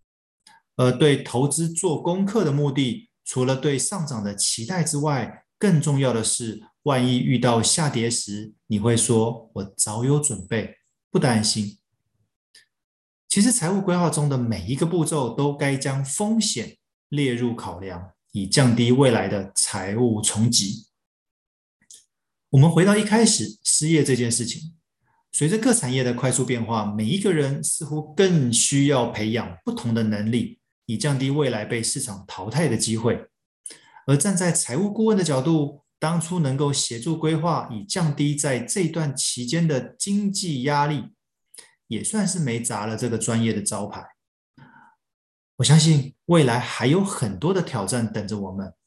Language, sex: Chinese, male